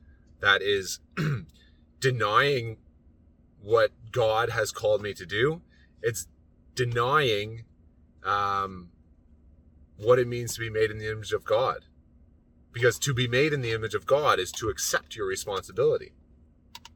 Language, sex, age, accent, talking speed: English, male, 30-49, American, 135 wpm